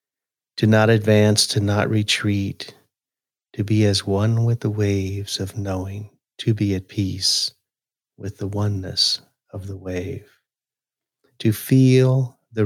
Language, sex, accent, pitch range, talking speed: English, male, American, 95-120 Hz, 135 wpm